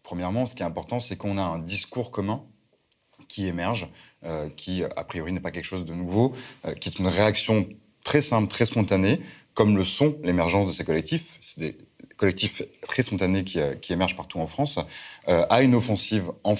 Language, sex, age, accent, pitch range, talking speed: French, male, 30-49, French, 90-115 Hz, 200 wpm